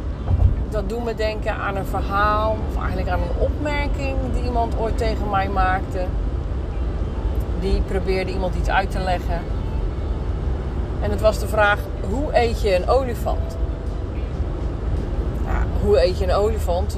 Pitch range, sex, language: 75-90 Hz, female, Dutch